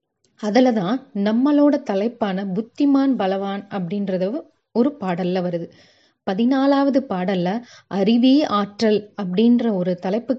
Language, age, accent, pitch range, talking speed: Tamil, 30-49, native, 190-250 Hz, 90 wpm